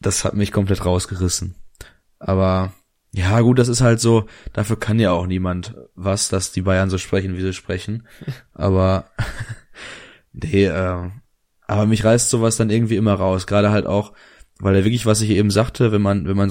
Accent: German